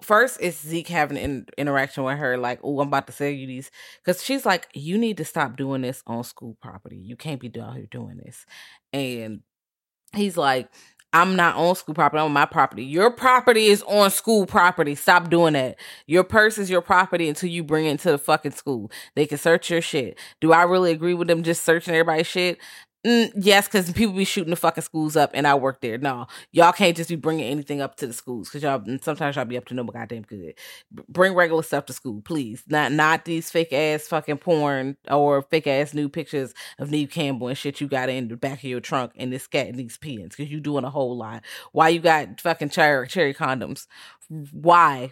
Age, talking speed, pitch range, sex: 20-39, 225 wpm, 135-175 Hz, female